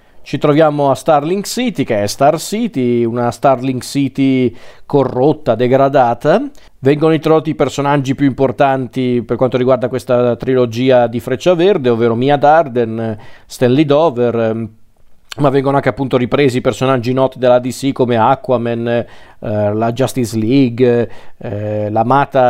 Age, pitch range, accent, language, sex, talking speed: 40-59, 120-145 Hz, native, Italian, male, 135 wpm